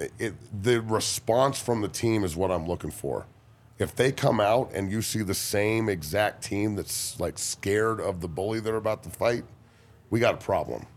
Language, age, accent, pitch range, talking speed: English, 30-49, American, 95-115 Hz, 190 wpm